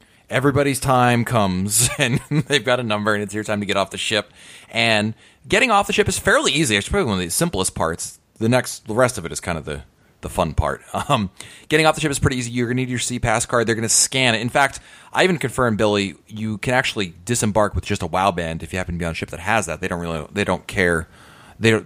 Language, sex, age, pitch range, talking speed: English, male, 30-49, 90-120 Hz, 270 wpm